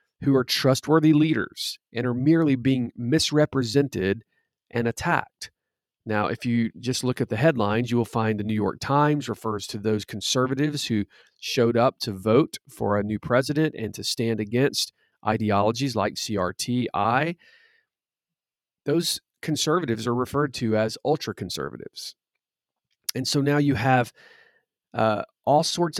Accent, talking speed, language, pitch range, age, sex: American, 140 wpm, English, 105-135 Hz, 40-59, male